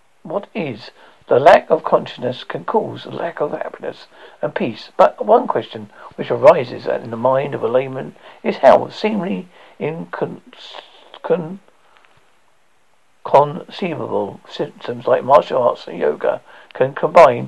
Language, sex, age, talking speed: English, male, 60-79, 125 wpm